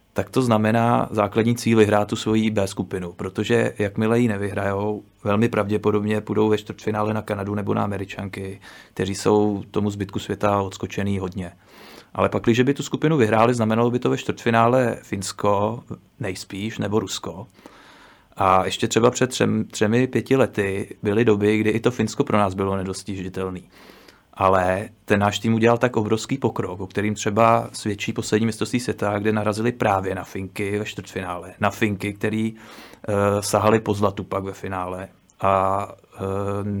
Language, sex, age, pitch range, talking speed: Czech, male, 30-49, 100-110 Hz, 160 wpm